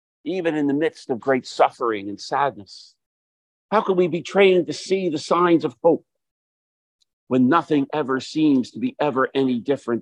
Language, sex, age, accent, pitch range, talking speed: English, male, 50-69, American, 105-150 Hz, 175 wpm